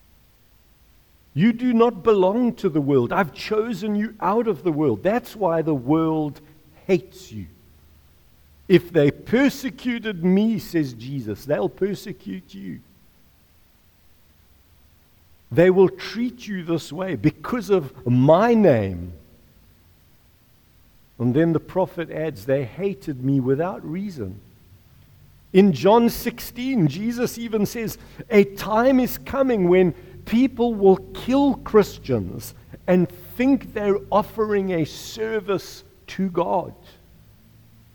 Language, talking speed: English, 115 wpm